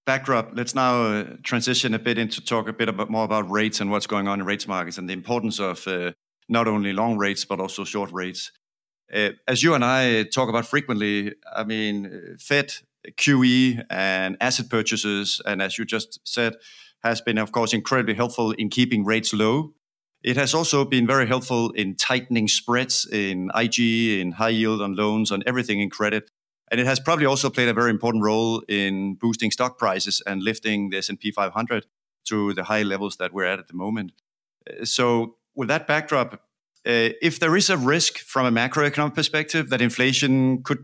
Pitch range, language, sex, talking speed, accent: 110-130 Hz, English, male, 190 wpm, Danish